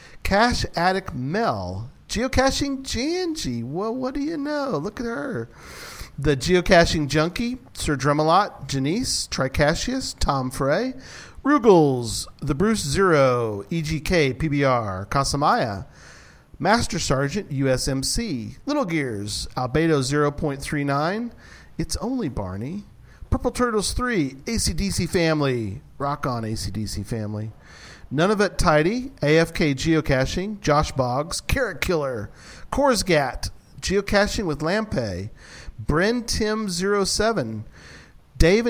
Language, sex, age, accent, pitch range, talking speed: English, male, 40-59, American, 125-200 Hz, 100 wpm